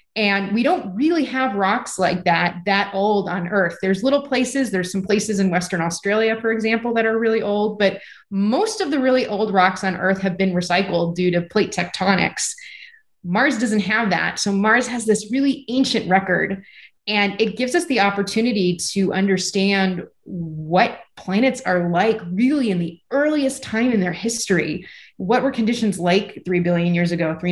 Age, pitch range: 30-49, 175-220 Hz